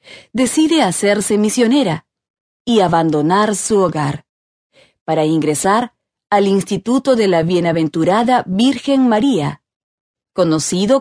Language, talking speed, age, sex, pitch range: Spanish, 95 wpm, 30-49, female, 165-240 Hz